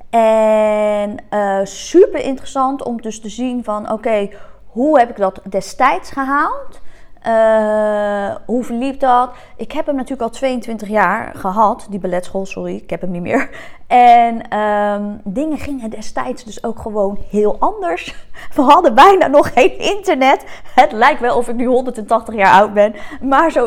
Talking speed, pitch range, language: 160 wpm, 210-275 Hz, Dutch